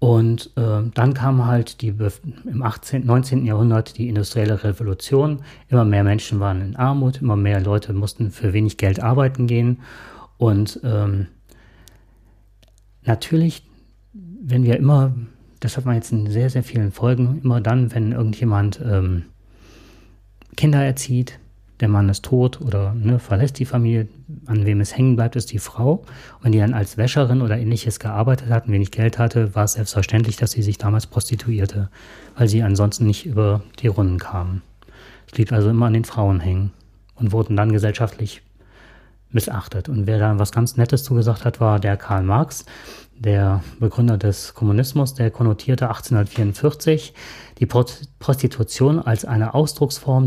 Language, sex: German, male